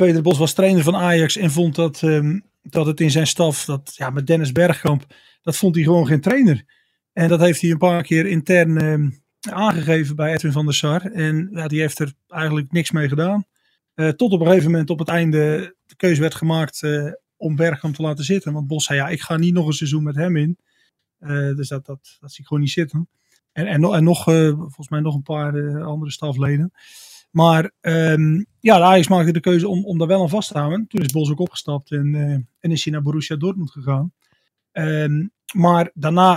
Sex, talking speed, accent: male, 215 wpm, Dutch